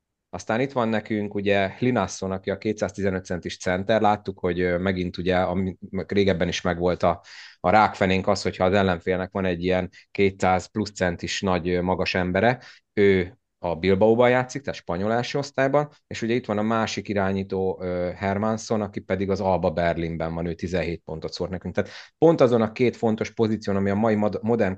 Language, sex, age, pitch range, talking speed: Hungarian, male, 30-49, 90-105 Hz, 175 wpm